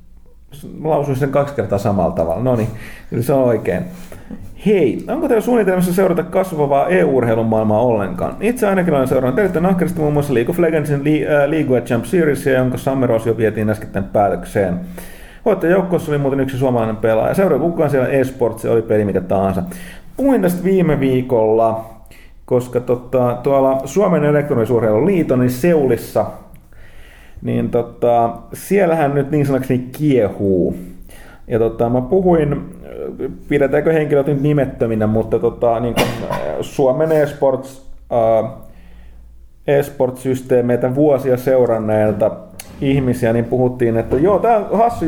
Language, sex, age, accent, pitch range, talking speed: Finnish, male, 30-49, native, 115-150 Hz, 130 wpm